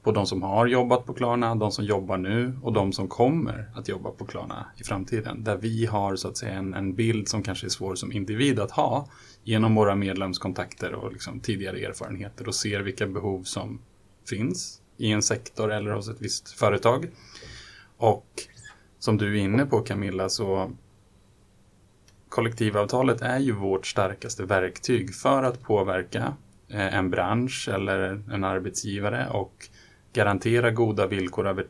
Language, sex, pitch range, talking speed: Swedish, male, 95-115 Hz, 165 wpm